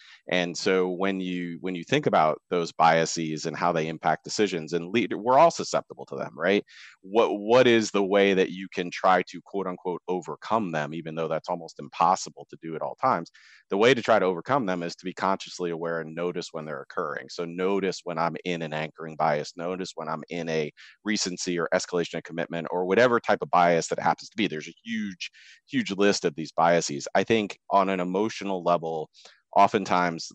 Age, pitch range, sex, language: 30-49, 80-95 Hz, male, English